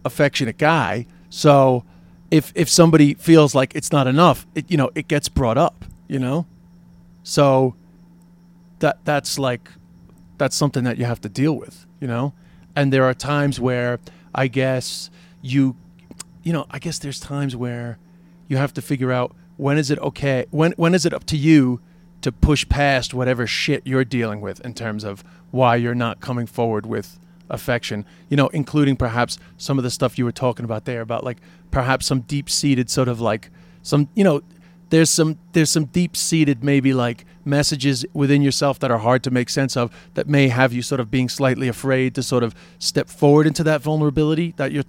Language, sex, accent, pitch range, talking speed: English, male, American, 125-165 Hz, 195 wpm